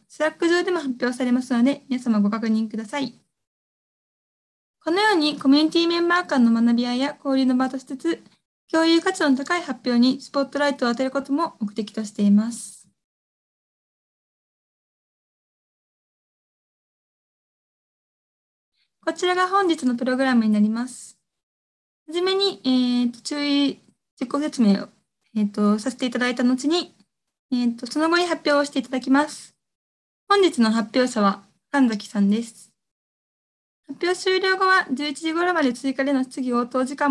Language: Japanese